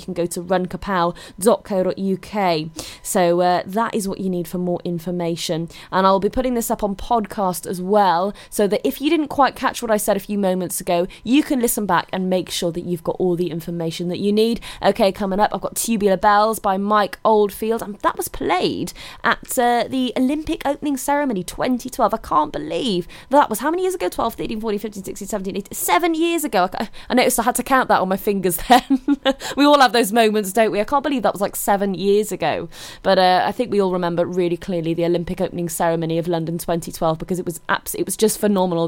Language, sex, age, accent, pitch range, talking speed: English, female, 20-39, British, 180-235 Hz, 230 wpm